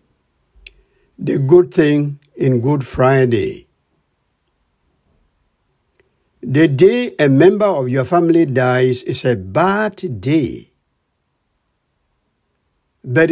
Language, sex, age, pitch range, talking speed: English, male, 60-79, 130-185 Hz, 80 wpm